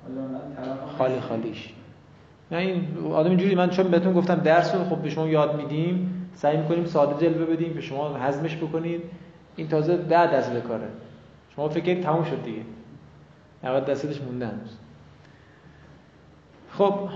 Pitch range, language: 135-170 Hz, Persian